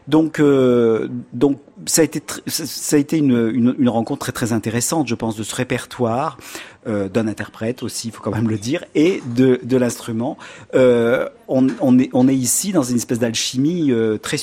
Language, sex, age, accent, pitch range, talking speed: French, male, 40-59, French, 120-145 Hz, 210 wpm